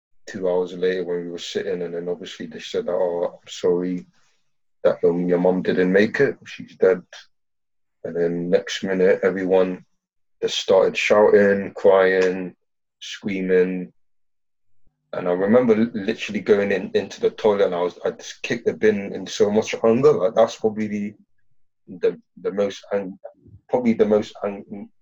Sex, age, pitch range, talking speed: male, 20-39, 90-135 Hz, 160 wpm